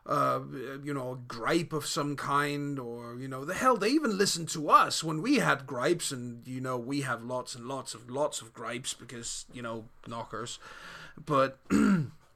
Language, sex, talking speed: English, male, 190 wpm